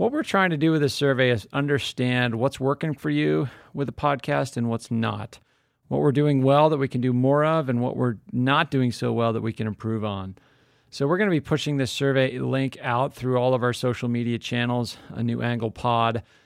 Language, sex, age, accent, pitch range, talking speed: English, male, 40-59, American, 115-135 Hz, 230 wpm